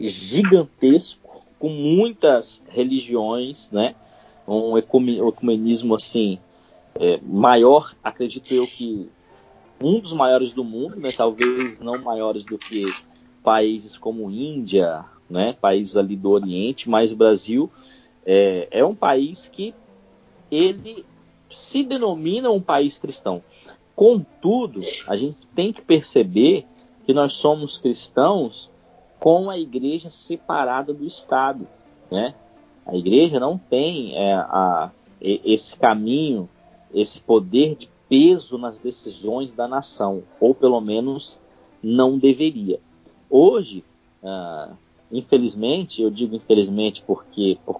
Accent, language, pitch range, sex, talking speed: Brazilian, Portuguese, 110-145 Hz, male, 115 wpm